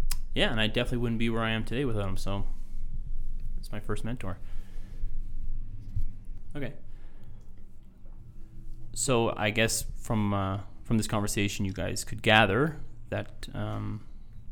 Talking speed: 130 wpm